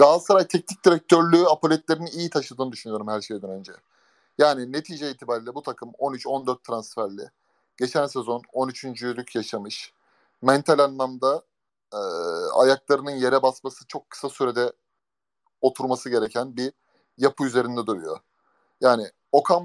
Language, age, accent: Turkish, 30-49, native